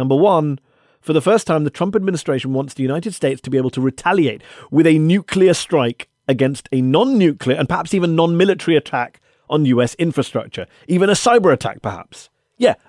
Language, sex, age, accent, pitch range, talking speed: English, male, 40-59, British, 130-190 Hz, 180 wpm